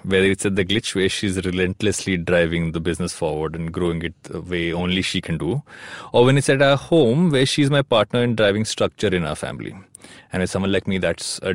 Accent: Indian